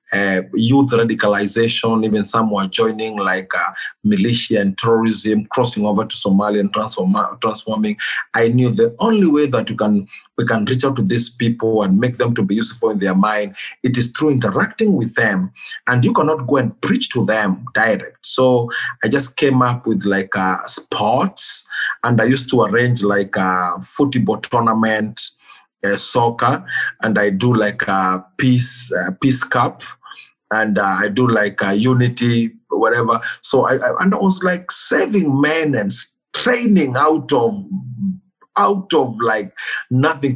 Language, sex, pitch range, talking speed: English, male, 110-135 Hz, 170 wpm